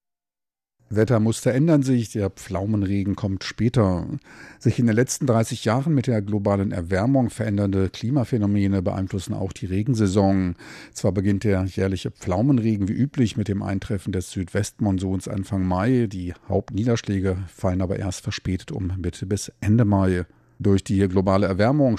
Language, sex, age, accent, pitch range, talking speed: German, male, 50-69, German, 95-110 Hz, 140 wpm